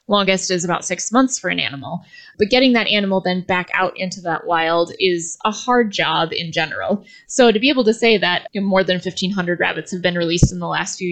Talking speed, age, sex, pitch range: 225 wpm, 20-39, female, 180-245 Hz